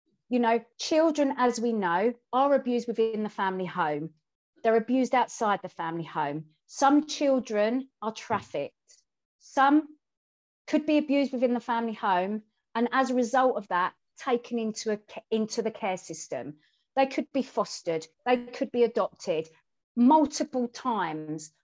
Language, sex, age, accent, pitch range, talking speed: English, female, 40-59, British, 200-255 Hz, 145 wpm